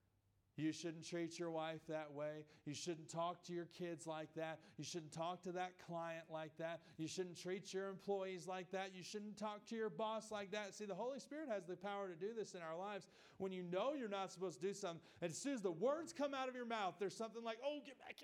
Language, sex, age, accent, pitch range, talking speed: English, male, 40-59, American, 150-195 Hz, 255 wpm